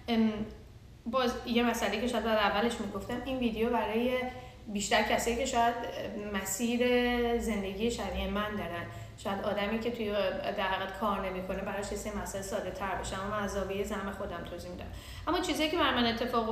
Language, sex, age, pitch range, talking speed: Persian, female, 10-29, 195-235 Hz, 155 wpm